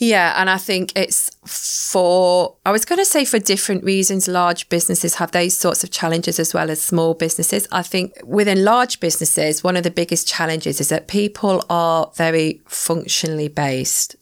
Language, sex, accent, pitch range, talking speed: English, female, British, 155-185 Hz, 180 wpm